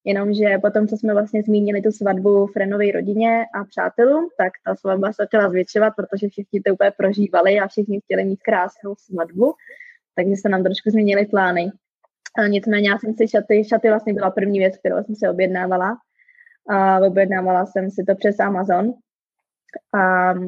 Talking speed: 175 wpm